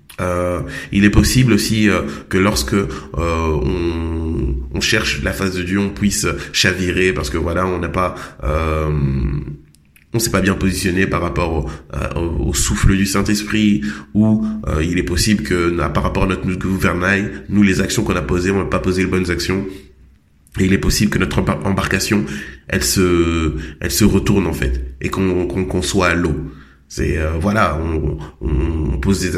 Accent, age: French, 20-39